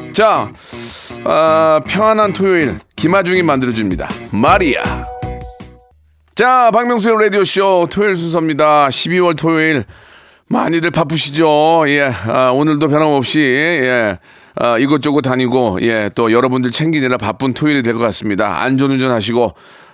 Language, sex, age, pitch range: Korean, male, 40-59, 120-160 Hz